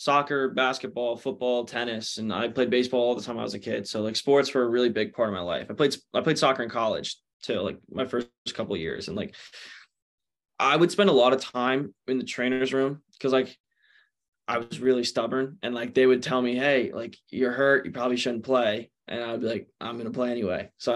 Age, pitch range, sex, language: 20-39, 120-130 Hz, male, English